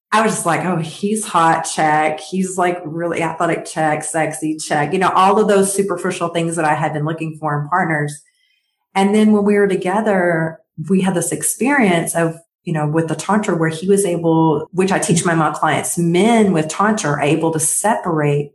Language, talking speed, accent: English, 205 wpm, American